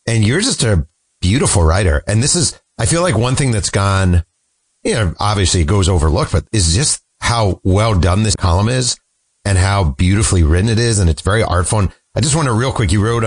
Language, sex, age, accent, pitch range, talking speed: English, male, 40-59, American, 85-110 Hz, 225 wpm